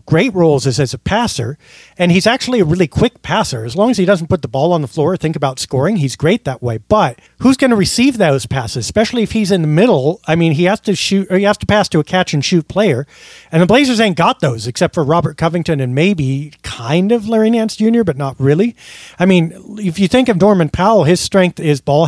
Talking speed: 250 wpm